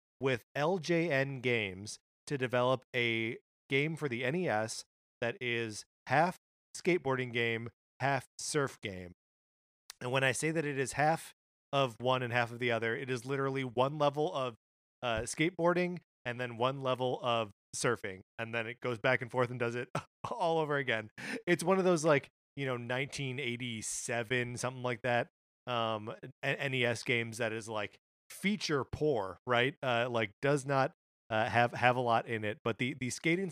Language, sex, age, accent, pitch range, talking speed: English, male, 30-49, American, 115-140 Hz, 170 wpm